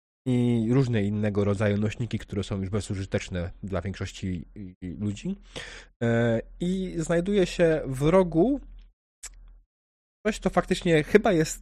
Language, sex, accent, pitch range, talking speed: Polish, male, native, 110-140 Hz, 115 wpm